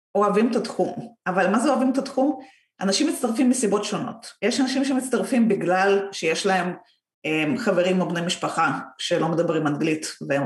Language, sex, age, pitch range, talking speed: Hebrew, female, 30-49, 185-255 Hz, 160 wpm